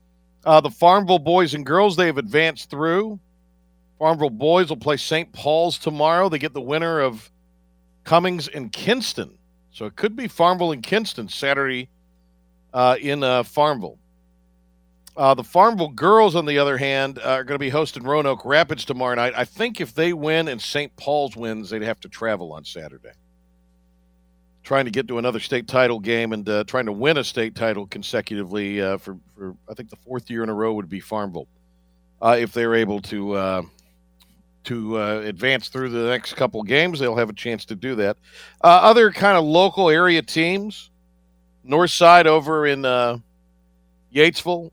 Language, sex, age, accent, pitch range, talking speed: English, male, 50-69, American, 95-155 Hz, 180 wpm